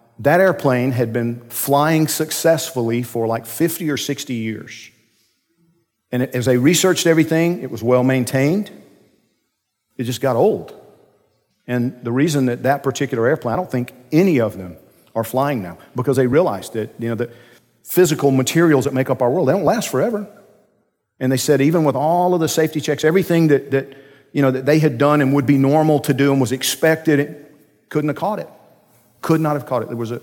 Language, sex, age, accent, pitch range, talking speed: English, male, 50-69, American, 115-145 Hz, 185 wpm